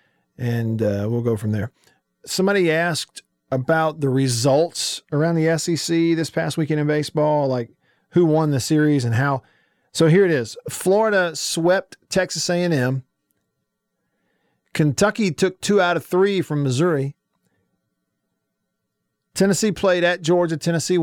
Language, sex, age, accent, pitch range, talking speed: English, male, 40-59, American, 130-165 Hz, 135 wpm